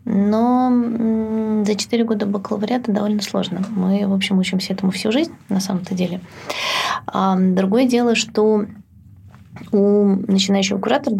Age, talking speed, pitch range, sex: 20-39, 125 wpm, 185-220 Hz, female